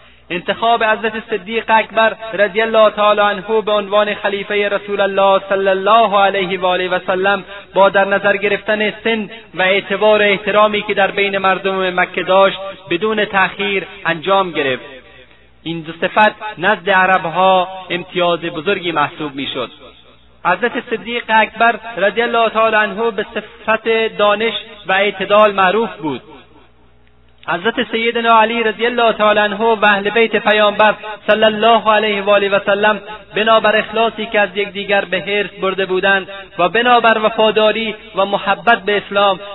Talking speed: 140 wpm